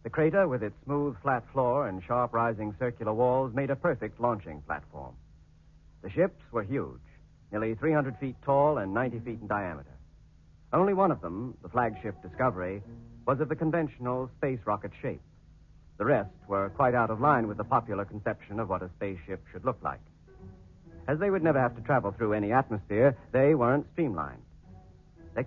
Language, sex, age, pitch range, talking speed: English, male, 60-79, 95-130 Hz, 180 wpm